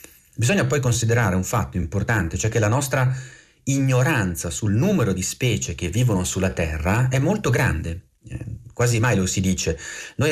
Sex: male